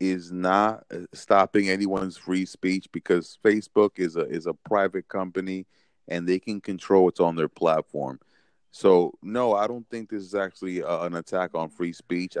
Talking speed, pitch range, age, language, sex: 175 wpm, 85-105 Hz, 30-49, English, male